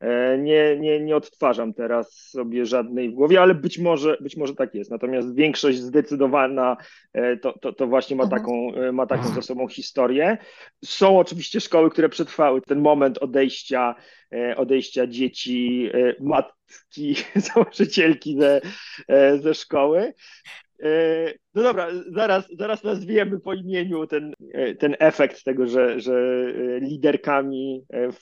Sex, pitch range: male, 130-170 Hz